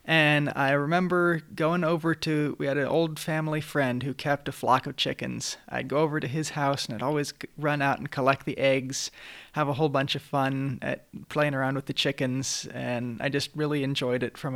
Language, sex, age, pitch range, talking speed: English, male, 20-39, 135-155 Hz, 215 wpm